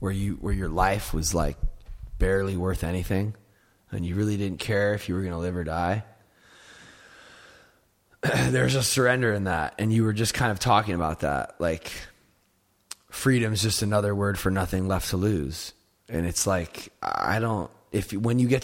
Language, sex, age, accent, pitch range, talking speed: English, male, 20-39, American, 90-115 Hz, 185 wpm